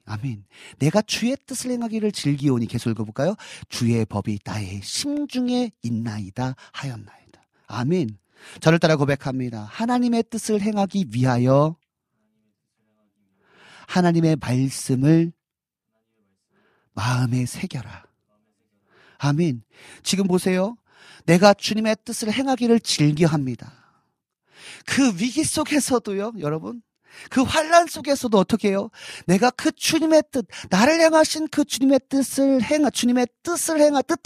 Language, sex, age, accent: Korean, male, 40-59, native